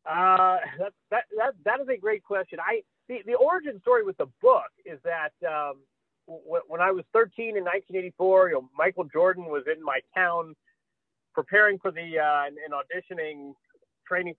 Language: English